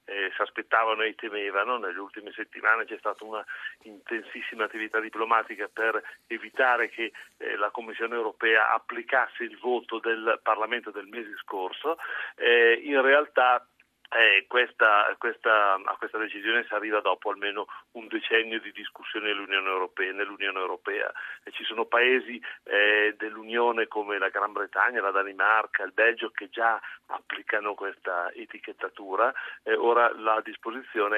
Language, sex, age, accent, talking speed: Italian, male, 40-59, native, 135 wpm